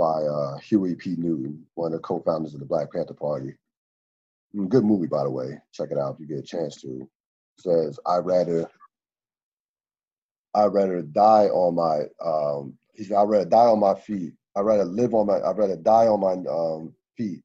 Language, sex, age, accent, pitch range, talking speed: English, male, 30-49, American, 80-115 Hz, 195 wpm